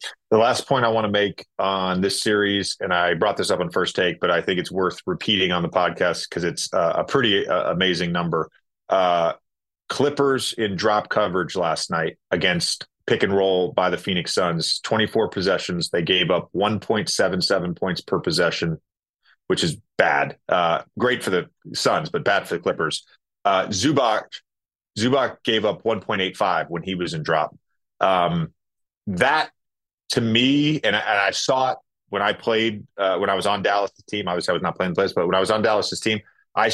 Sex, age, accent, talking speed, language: male, 30-49, American, 195 wpm, English